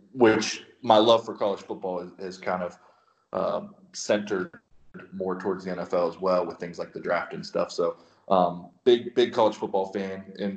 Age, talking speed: 30-49, 185 wpm